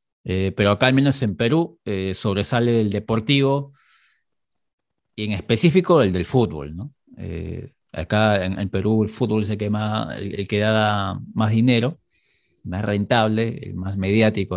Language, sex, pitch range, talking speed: Spanish, male, 105-135 Hz, 160 wpm